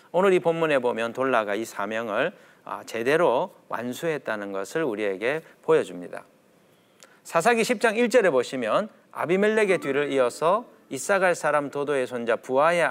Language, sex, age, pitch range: Korean, male, 40-59, 130-210 Hz